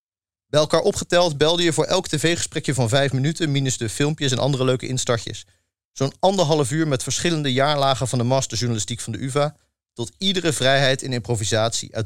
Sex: male